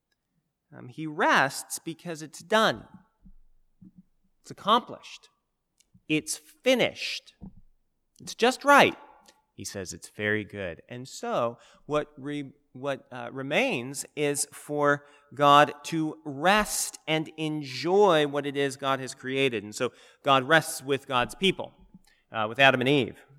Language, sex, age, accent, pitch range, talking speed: English, male, 30-49, American, 115-155 Hz, 125 wpm